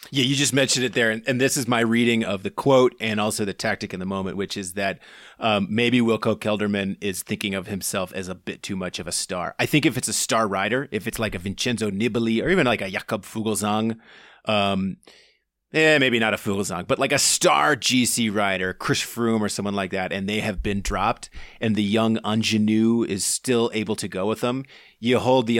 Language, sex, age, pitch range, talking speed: English, male, 30-49, 100-120 Hz, 225 wpm